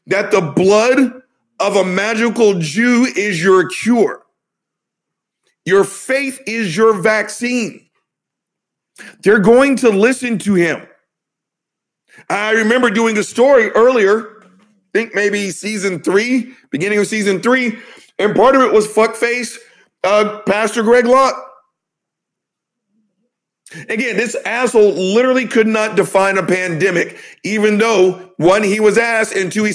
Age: 40-59